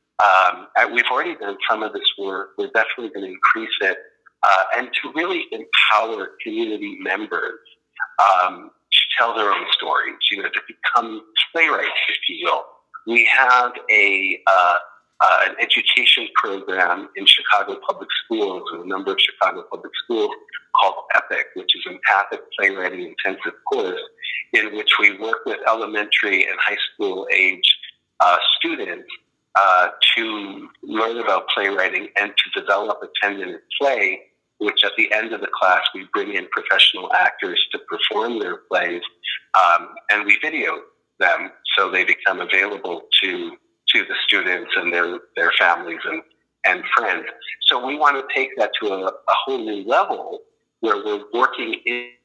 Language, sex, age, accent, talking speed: English, male, 50-69, American, 160 wpm